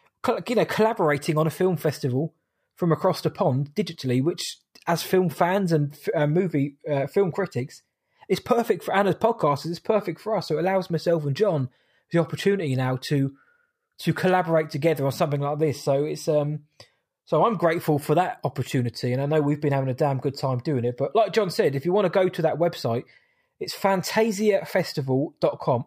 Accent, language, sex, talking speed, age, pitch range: British, English, male, 195 wpm, 20-39, 140-180 Hz